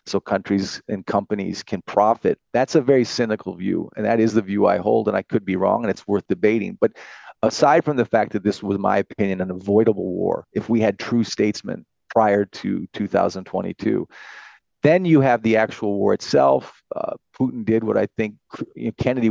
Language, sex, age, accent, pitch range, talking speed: English, male, 40-59, American, 100-120 Hz, 195 wpm